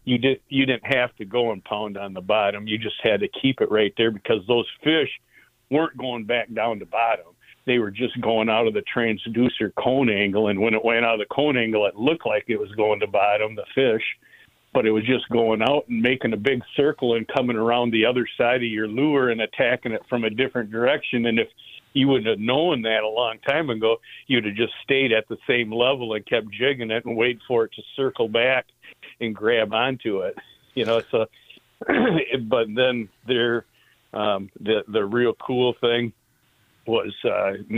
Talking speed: 210 wpm